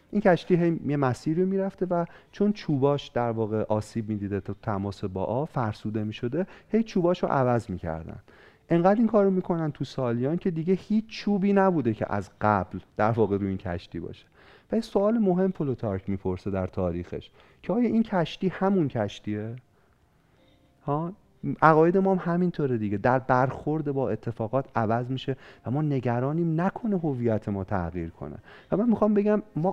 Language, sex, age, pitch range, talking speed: Persian, male, 40-59, 105-175 Hz, 170 wpm